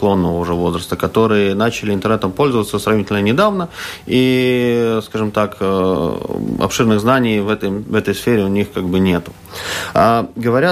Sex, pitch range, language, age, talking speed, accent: male, 95-115 Hz, Russian, 30-49, 140 wpm, native